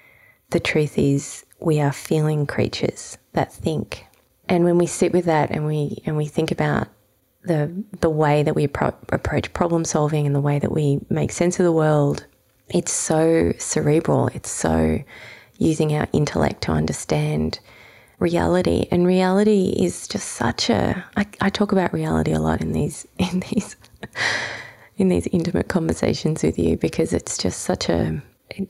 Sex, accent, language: female, Australian, English